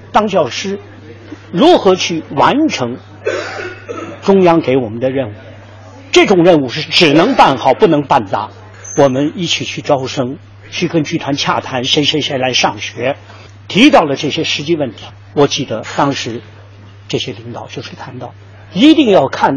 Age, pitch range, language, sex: 50-69, 100-155 Hz, Chinese, male